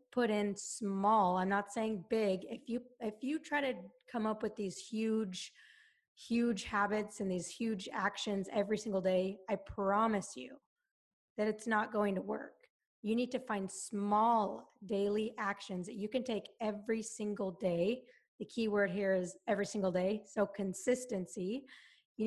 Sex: female